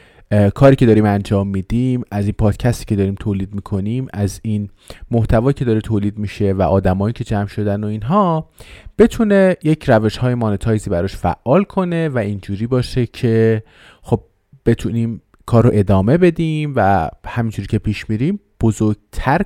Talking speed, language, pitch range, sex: 150 wpm, Persian, 105-140 Hz, male